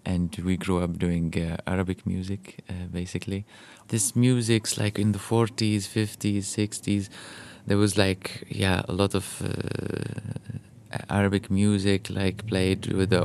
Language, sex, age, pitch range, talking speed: Swedish, male, 20-39, 90-105 Hz, 145 wpm